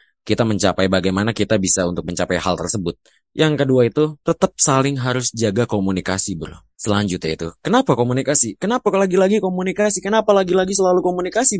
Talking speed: 150 wpm